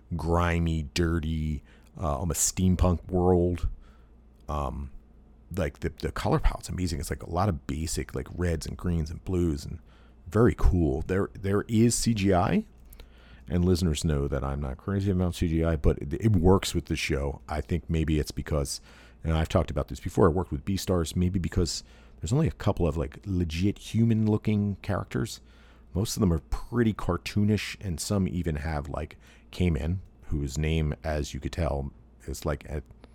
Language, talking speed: English, 175 wpm